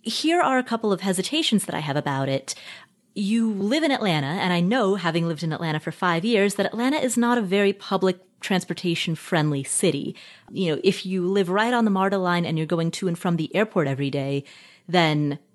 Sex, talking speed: female, 210 wpm